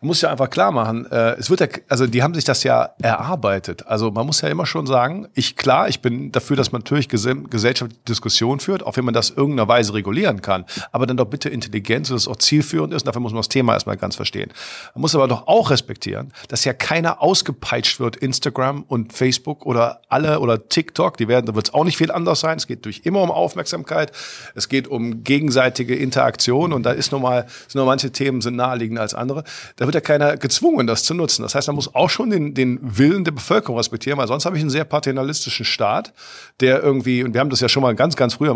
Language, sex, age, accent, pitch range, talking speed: German, male, 50-69, German, 120-145 Hz, 235 wpm